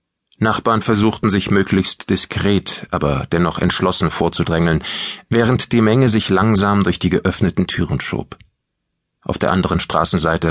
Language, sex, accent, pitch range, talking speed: German, male, German, 85-105 Hz, 130 wpm